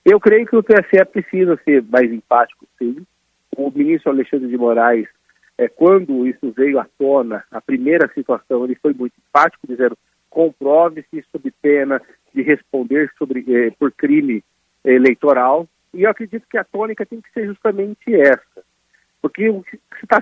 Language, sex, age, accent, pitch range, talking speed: Portuguese, male, 50-69, Brazilian, 140-225 Hz, 155 wpm